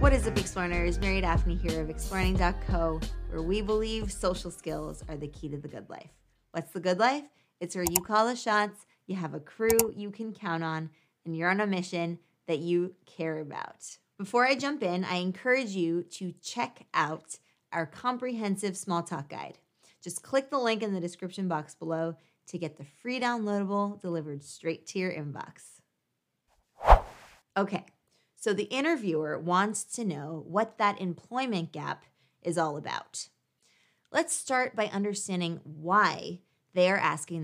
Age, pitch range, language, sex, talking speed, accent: 20-39, 165-210 Hz, English, female, 165 wpm, American